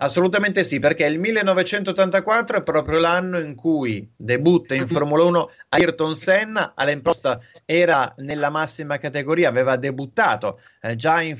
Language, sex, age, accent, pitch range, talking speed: Italian, male, 30-49, native, 145-185 Hz, 135 wpm